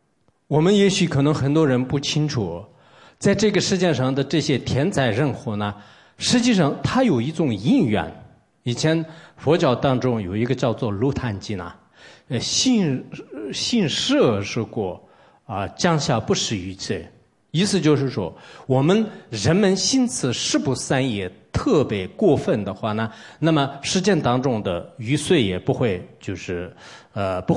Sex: male